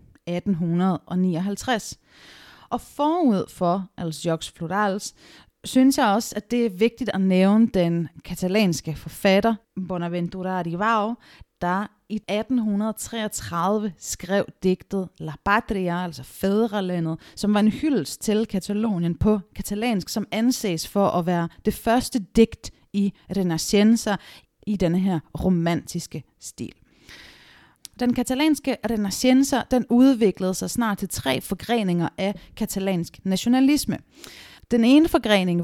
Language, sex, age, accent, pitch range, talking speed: Danish, female, 30-49, native, 175-225 Hz, 115 wpm